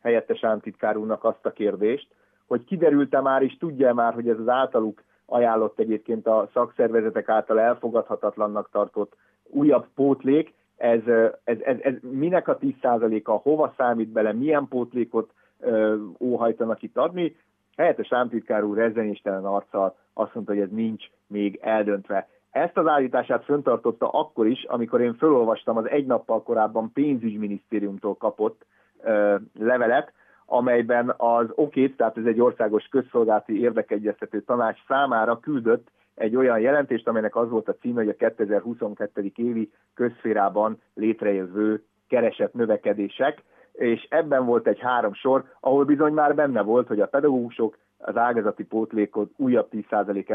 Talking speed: 140 wpm